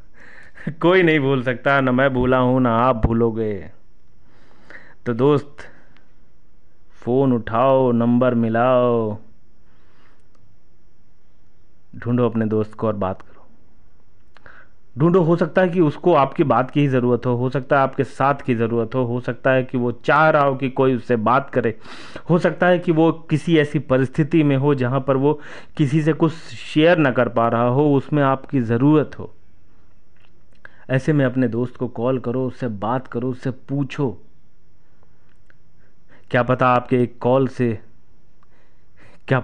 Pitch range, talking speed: 115-140 Hz, 155 wpm